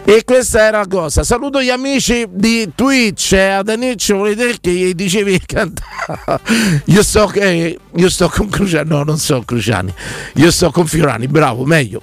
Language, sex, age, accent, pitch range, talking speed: Italian, male, 50-69, native, 135-190 Hz, 165 wpm